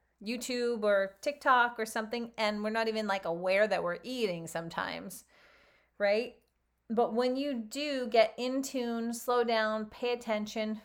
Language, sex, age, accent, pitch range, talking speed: English, female, 30-49, American, 200-245 Hz, 150 wpm